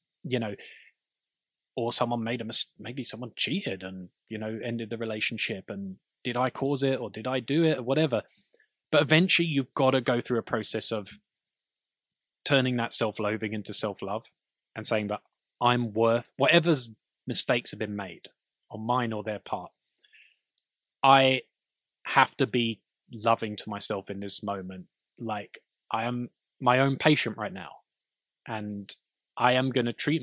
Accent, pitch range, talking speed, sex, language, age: British, 110-145 Hz, 165 wpm, male, English, 20-39